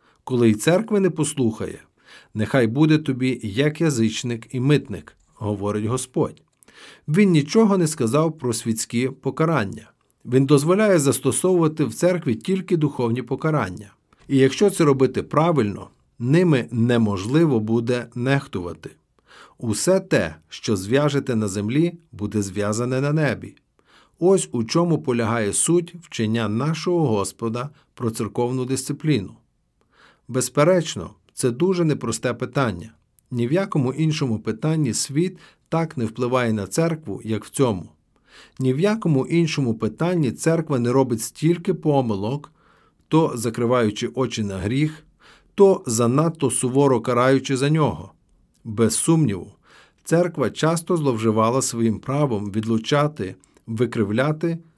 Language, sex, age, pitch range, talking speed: Ukrainian, male, 50-69, 115-155 Hz, 120 wpm